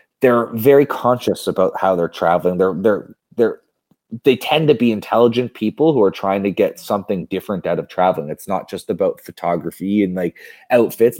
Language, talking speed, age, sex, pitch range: English, 180 wpm, 30-49, male, 95-120 Hz